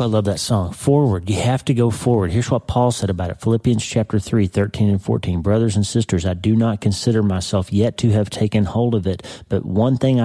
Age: 40-59